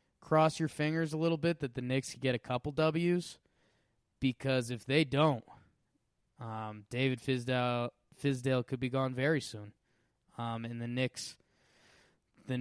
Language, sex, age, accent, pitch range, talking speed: English, male, 20-39, American, 125-145 Hz, 150 wpm